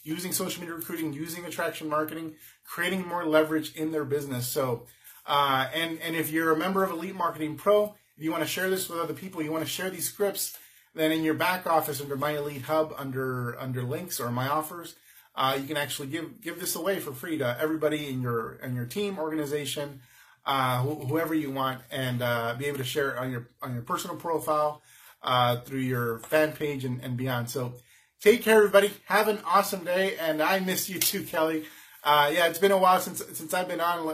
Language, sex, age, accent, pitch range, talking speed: English, male, 30-49, American, 135-170 Hz, 220 wpm